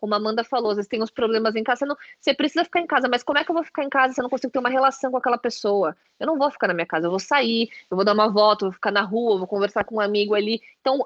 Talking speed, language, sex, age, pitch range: 355 wpm, Portuguese, female, 20-39, 215-260 Hz